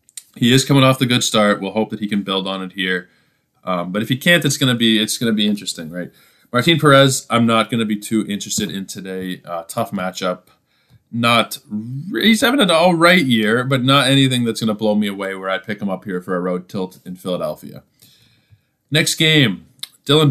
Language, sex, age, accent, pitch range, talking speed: English, male, 20-39, American, 95-130 Hz, 225 wpm